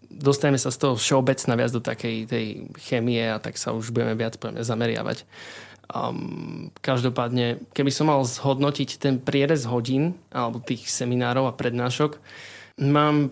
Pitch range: 120-135 Hz